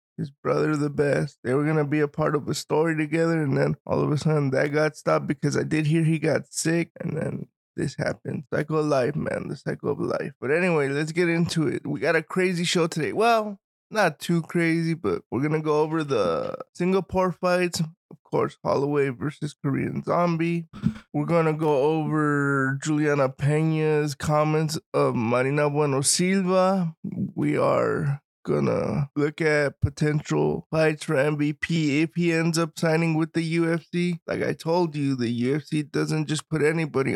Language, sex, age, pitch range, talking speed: English, male, 20-39, 145-165 Hz, 180 wpm